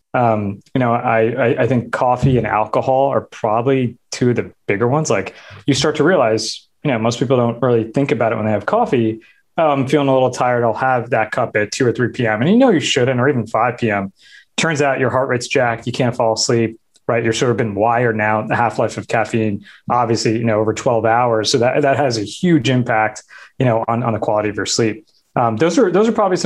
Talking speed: 245 wpm